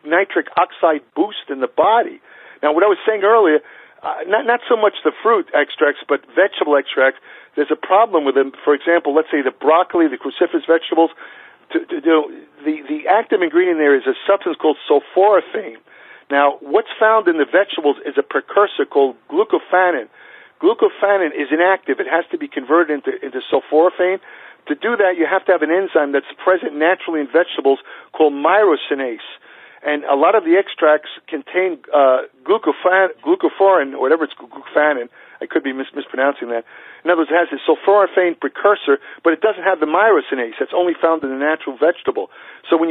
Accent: American